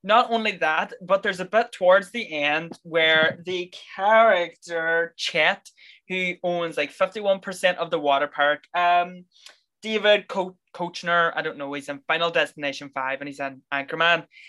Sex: male